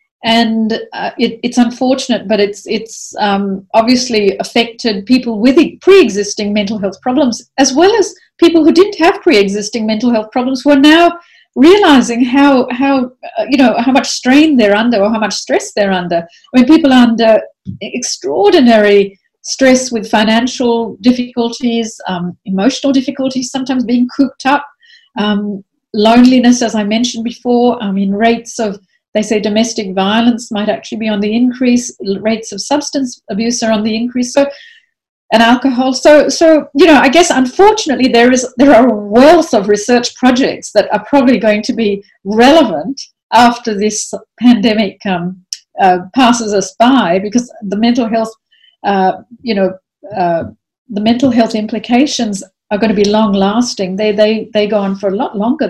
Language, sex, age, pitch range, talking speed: English, female, 40-59, 215-270 Hz, 165 wpm